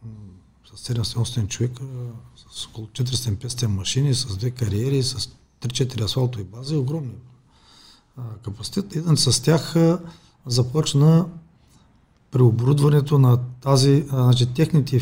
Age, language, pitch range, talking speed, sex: 40-59, Bulgarian, 115-135 Hz, 95 wpm, male